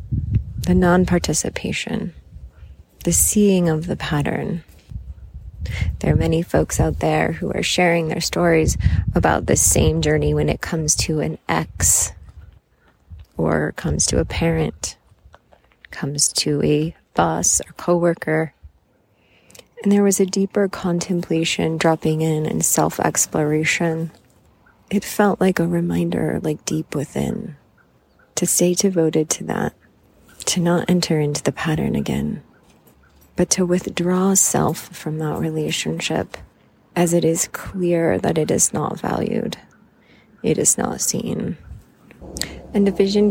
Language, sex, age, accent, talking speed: English, female, 30-49, American, 125 wpm